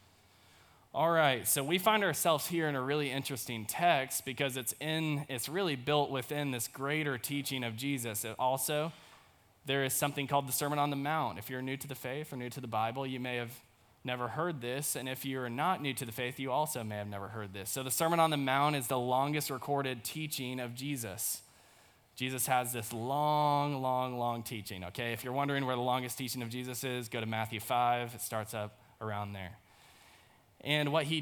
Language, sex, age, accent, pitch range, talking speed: English, male, 20-39, American, 120-145 Hz, 210 wpm